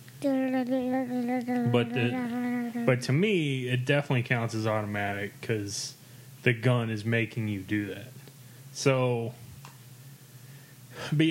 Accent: American